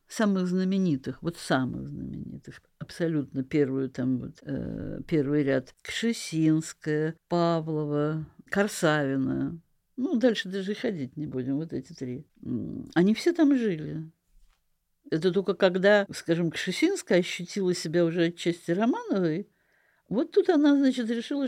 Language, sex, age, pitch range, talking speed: Russian, female, 50-69, 155-220 Hz, 120 wpm